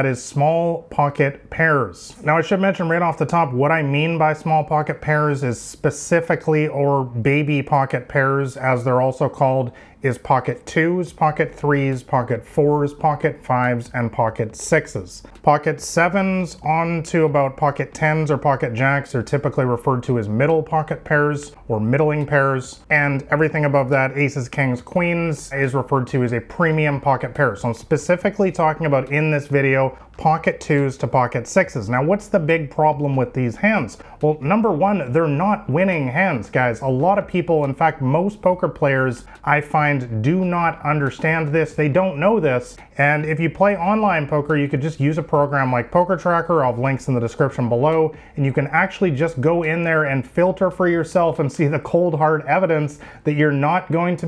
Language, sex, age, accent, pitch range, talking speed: English, male, 30-49, American, 135-165 Hz, 190 wpm